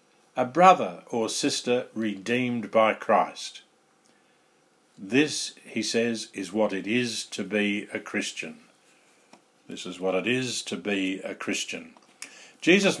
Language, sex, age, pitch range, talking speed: English, male, 50-69, 110-160 Hz, 130 wpm